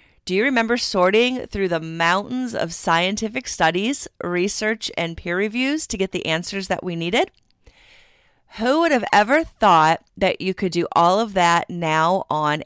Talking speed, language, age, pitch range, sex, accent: 165 wpm, English, 30-49, 165-215 Hz, female, American